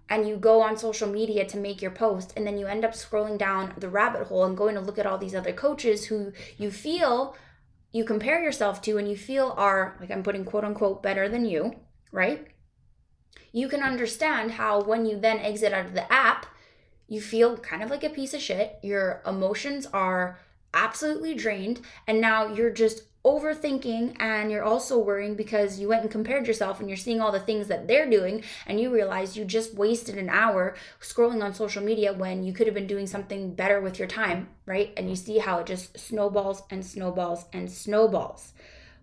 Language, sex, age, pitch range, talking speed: English, female, 10-29, 195-230 Hz, 205 wpm